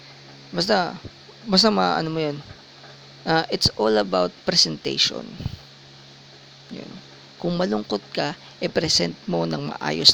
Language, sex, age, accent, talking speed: English, female, 20-39, Filipino, 105 wpm